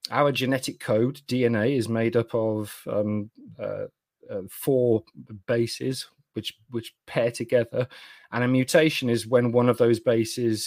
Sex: male